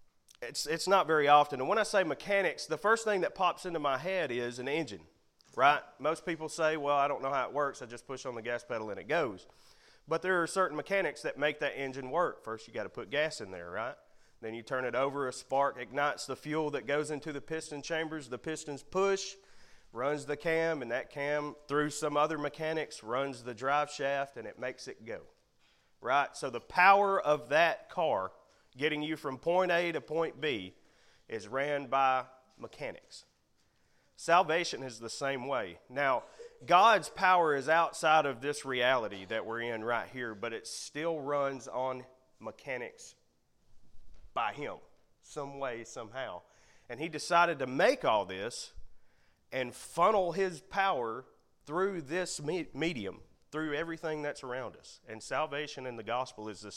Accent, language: American, English